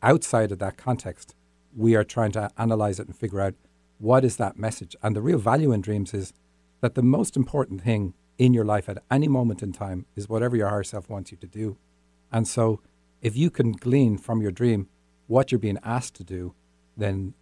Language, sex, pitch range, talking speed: English, male, 95-115 Hz, 215 wpm